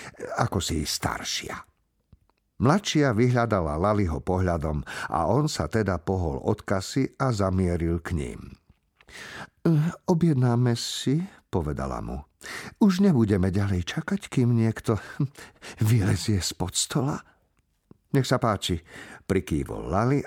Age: 50-69